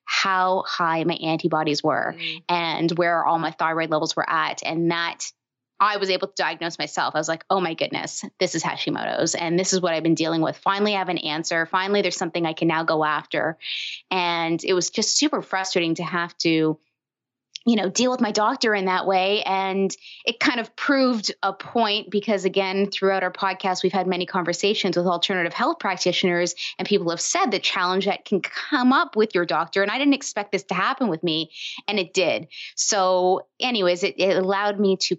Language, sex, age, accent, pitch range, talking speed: English, female, 20-39, American, 170-195 Hz, 205 wpm